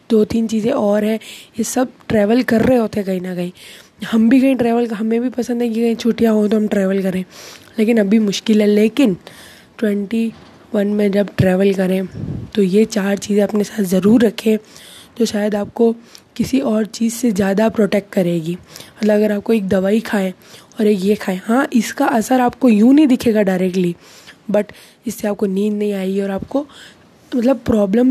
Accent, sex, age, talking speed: native, female, 20-39, 185 wpm